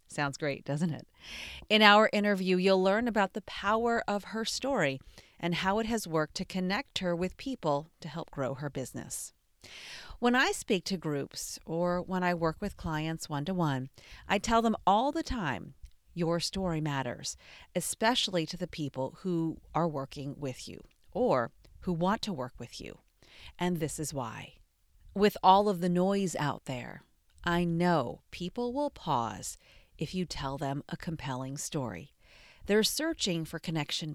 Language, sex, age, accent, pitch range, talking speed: English, female, 40-59, American, 145-195 Hz, 165 wpm